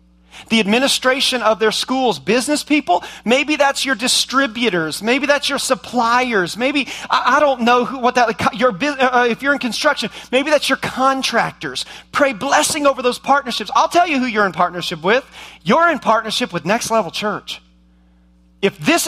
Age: 40-59